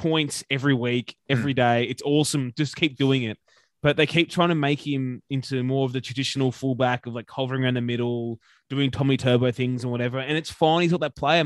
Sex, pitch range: male, 120-145 Hz